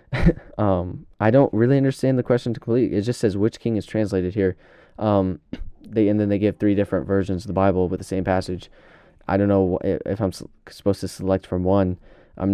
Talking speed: 210 wpm